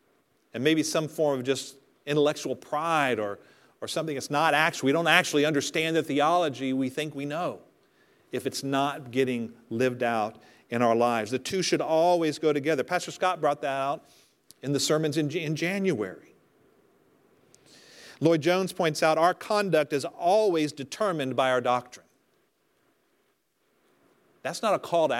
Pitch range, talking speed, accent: 130-165 Hz, 160 wpm, American